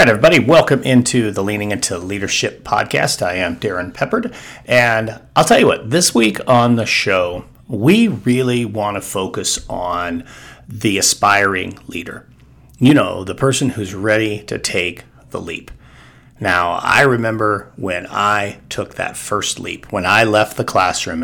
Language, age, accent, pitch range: English, 40-59, American, 95-120 Hz